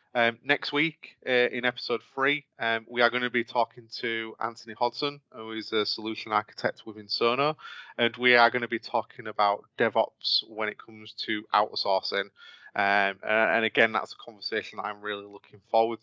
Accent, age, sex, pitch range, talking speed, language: British, 20-39, male, 110-125 Hz, 180 wpm, English